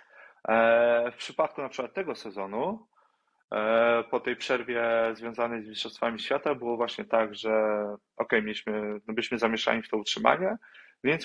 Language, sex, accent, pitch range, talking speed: Polish, male, native, 115-135 Hz, 150 wpm